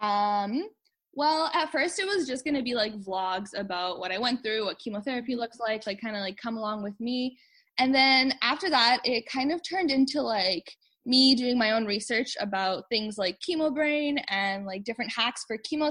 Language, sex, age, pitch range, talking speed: English, female, 10-29, 200-260 Hz, 210 wpm